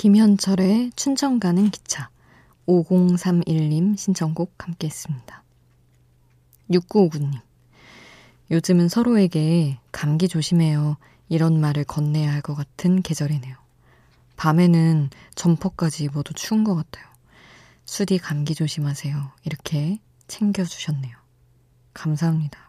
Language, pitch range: Korean, 135-175 Hz